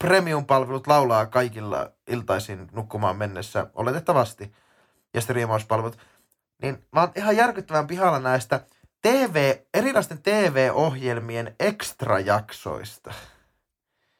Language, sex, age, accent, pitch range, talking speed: Finnish, male, 20-39, native, 125-175 Hz, 85 wpm